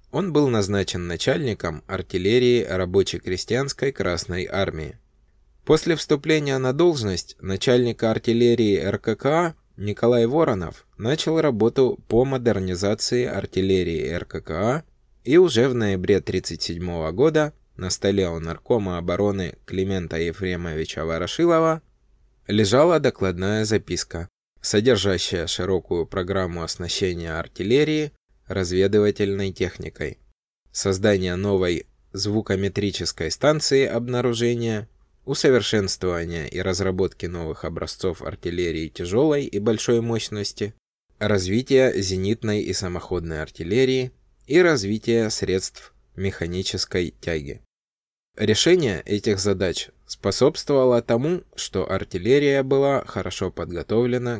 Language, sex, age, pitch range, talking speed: Russian, male, 20-39, 90-120 Hz, 90 wpm